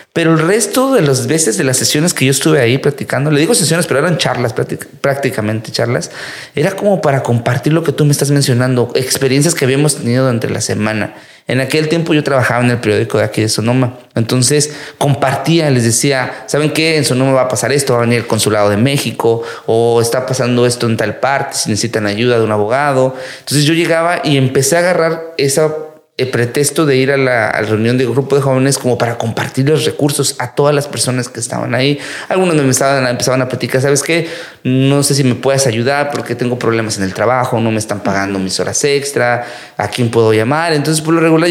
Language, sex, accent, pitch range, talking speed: English, male, Mexican, 120-150 Hz, 220 wpm